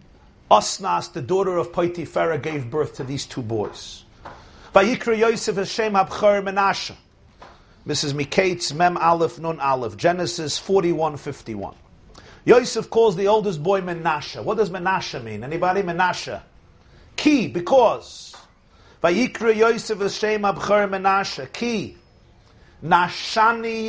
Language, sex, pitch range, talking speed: English, male, 135-200 Hz, 115 wpm